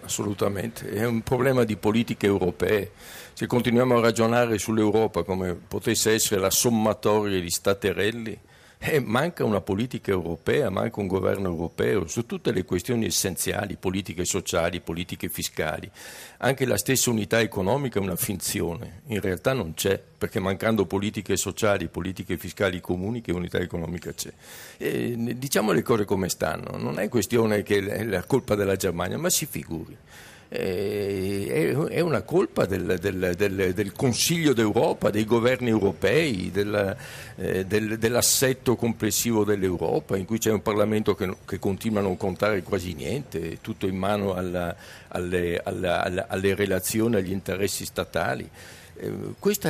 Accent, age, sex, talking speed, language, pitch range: native, 50-69, male, 140 wpm, Italian, 95-115 Hz